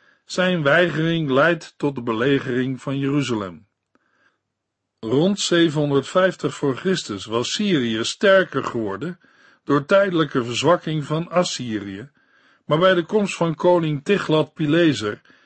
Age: 50-69